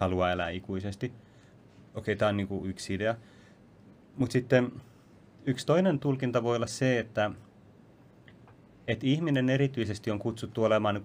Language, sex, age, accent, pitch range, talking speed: Finnish, male, 30-49, native, 90-110 Hz, 145 wpm